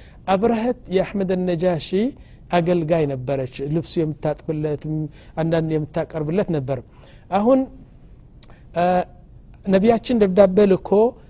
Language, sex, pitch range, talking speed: Amharic, male, 150-190 Hz, 90 wpm